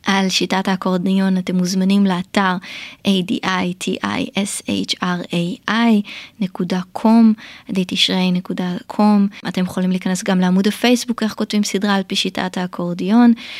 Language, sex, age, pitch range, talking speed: Hebrew, female, 20-39, 185-215 Hz, 95 wpm